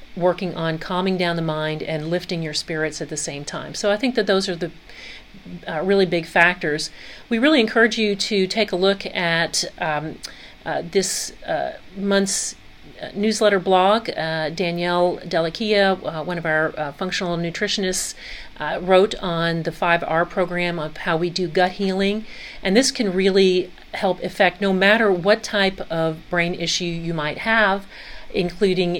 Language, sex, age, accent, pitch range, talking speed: English, female, 40-59, American, 165-195 Hz, 165 wpm